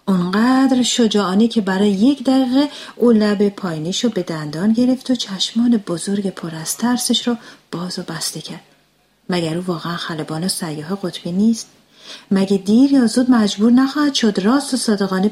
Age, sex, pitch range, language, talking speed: 40-59, female, 170-230 Hz, Persian, 160 wpm